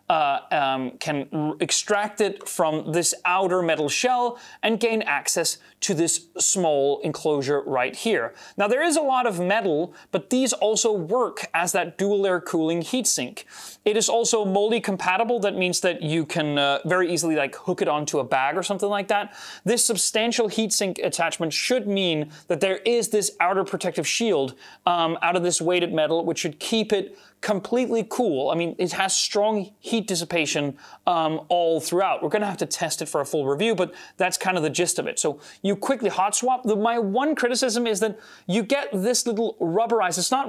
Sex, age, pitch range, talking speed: male, 30-49, 170-225 Hz, 195 wpm